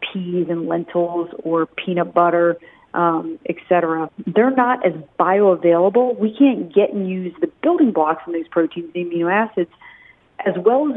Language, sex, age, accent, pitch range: Korean, female, 40-59, American, 170-210 Hz